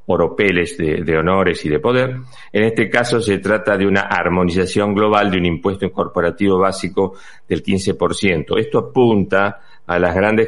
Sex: male